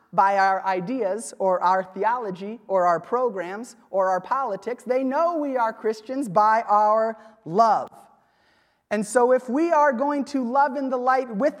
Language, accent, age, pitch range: English, American, 30-49, 195-245 Hz